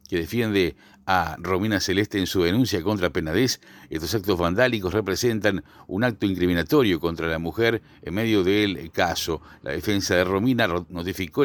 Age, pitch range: 50-69, 90-115 Hz